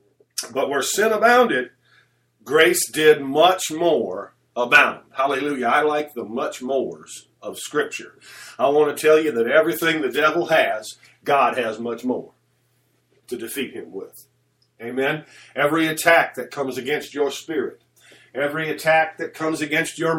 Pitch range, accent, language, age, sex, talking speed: 130-165 Hz, American, English, 50-69, male, 145 wpm